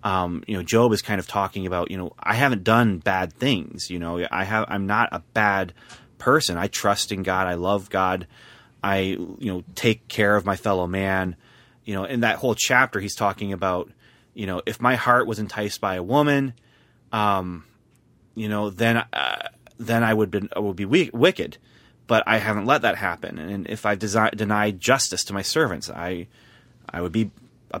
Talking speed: 205 wpm